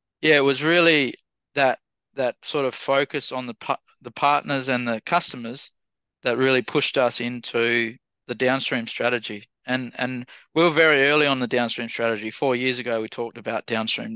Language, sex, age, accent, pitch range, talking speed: English, male, 20-39, Australian, 110-125 Hz, 175 wpm